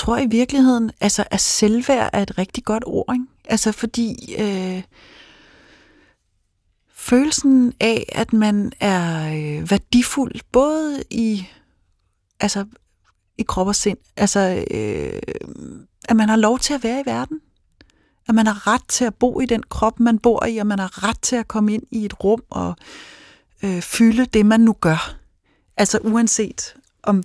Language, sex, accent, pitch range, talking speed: Danish, female, native, 175-225 Hz, 160 wpm